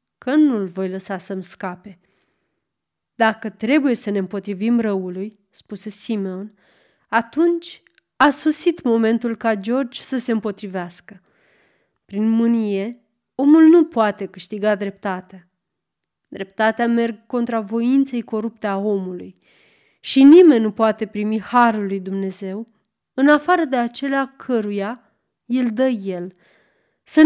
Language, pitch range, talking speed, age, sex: Romanian, 195-240 Hz, 120 wpm, 30-49, female